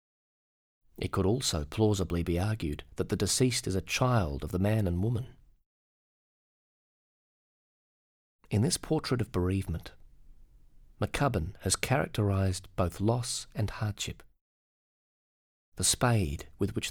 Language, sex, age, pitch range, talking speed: English, male, 30-49, 90-110 Hz, 115 wpm